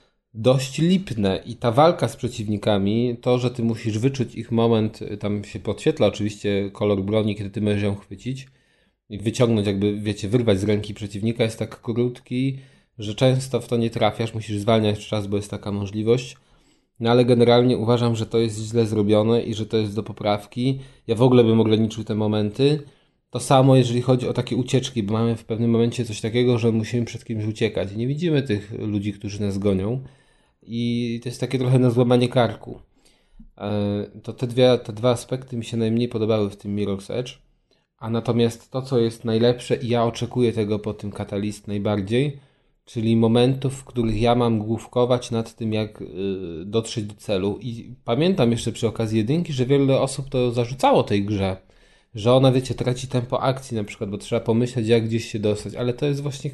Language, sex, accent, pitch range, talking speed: Polish, male, native, 105-125 Hz, 190 wpm